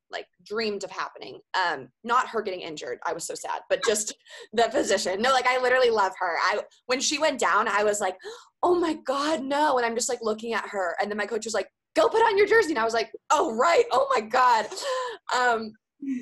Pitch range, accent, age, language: 195-265 Hz, American, 20-39, English